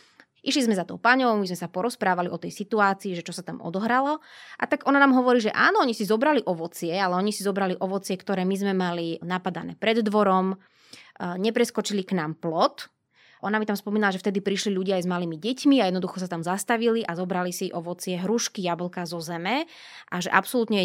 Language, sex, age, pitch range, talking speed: Slovak, female, 20-39, 180-215 Hz, 205 wpm